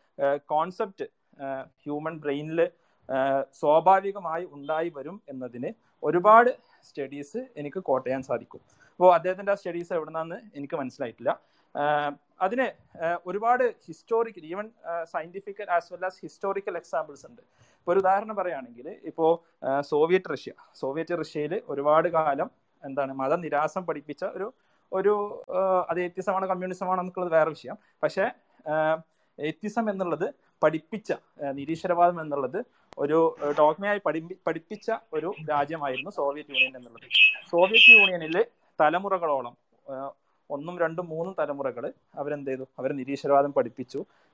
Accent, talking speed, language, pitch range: native, 105 wpm, Malayalam, 140-190 Hz